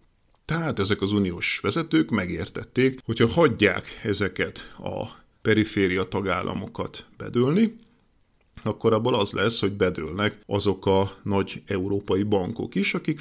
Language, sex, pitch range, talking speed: Hungarian, male, 95-115 Hz, 120 wpm